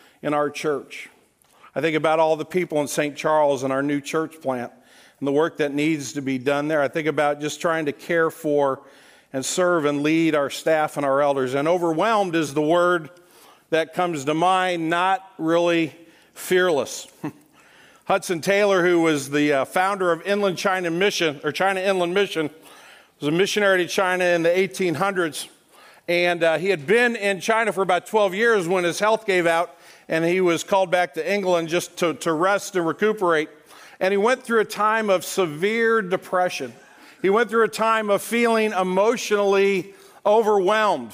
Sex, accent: male, American